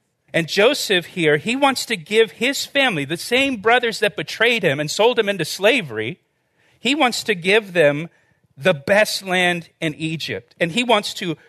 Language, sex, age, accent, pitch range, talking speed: English, male, 40-59, American, 145-195 Hz, 180 wpm